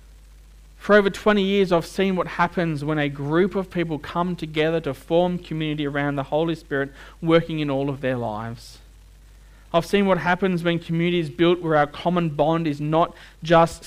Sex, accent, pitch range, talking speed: male, Australian, 140-175 Hz, 185 wpm